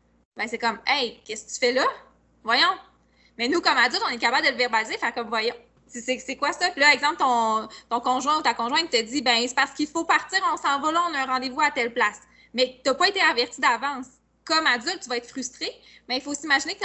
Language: French